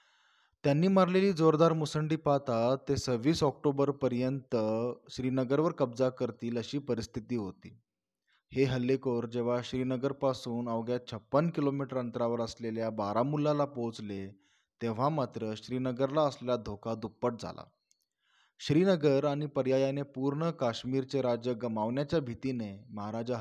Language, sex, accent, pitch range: Marathi, male, native, 115-140 Hz